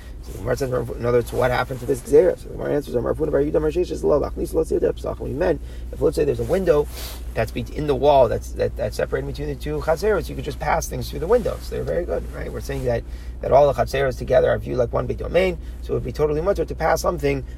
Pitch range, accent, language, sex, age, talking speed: 115-160 Hz, American, English, male, 30-49, 230 wpm